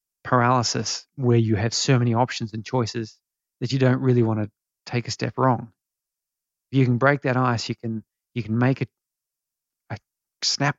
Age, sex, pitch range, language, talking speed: 20-39, male, 115-135 Hz, English, 185 wpm